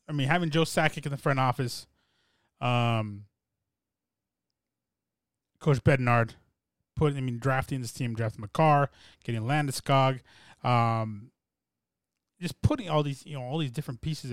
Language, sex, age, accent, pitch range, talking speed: English, male, 20-39, American, 125-150 Hz, 140 wpm